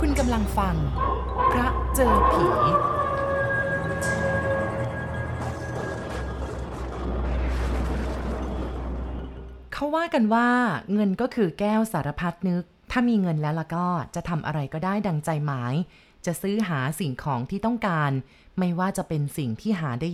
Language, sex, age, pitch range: Thai, female, 30-49, 140-195 Hz